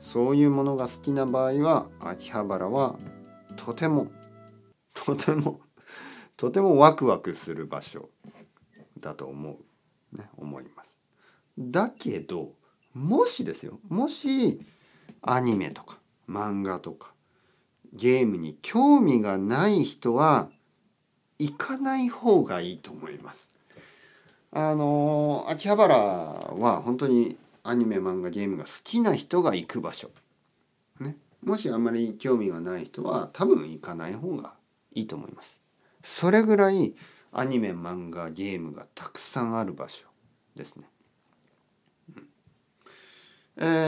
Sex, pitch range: male, 100-165 Hz